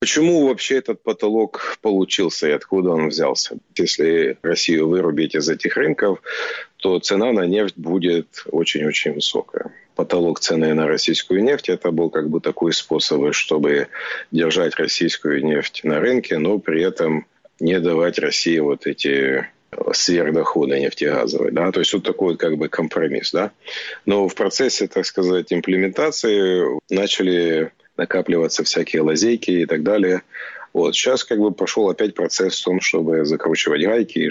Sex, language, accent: male, Russian, native